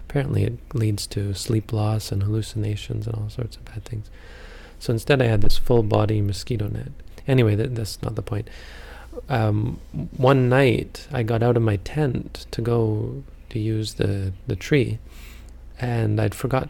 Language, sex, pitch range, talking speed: English, male, 90-120 Hz, 170 wpm